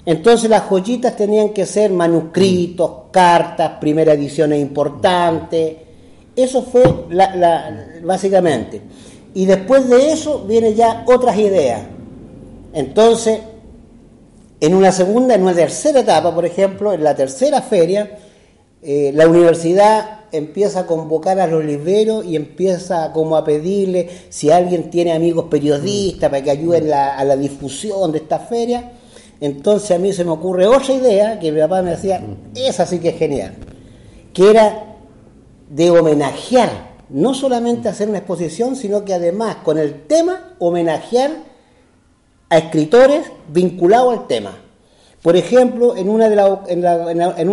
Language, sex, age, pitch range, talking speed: Spanish, male, 50-69, 165-220 Hz, 145 wpm